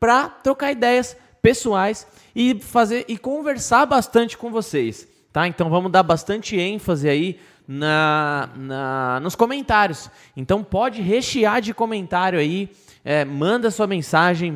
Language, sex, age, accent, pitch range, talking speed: Portuguese, male, 20-39, Brazilian, 155-215 Hz, 130 wpm